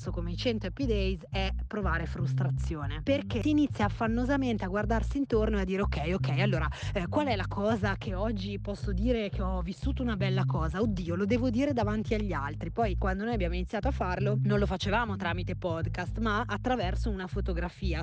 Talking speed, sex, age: 195 wpm, female, 20-39